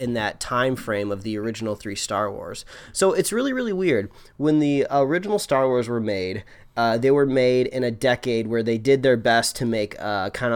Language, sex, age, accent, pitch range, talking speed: English, male, 20-39, American, 110-140 Hz, 215 wpm